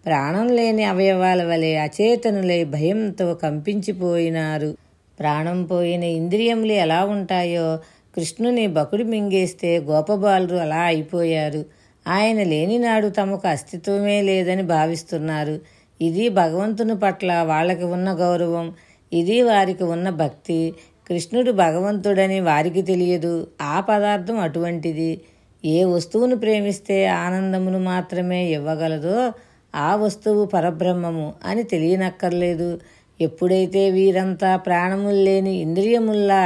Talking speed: 95 wpm